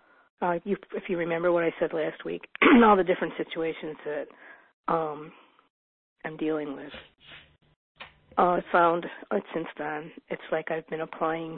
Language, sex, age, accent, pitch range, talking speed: English, female, 50-69, American, 170-205 Hz, 155 wpm